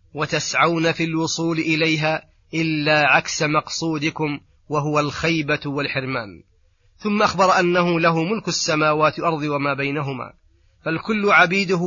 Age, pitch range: 30-49, 145-170 Hz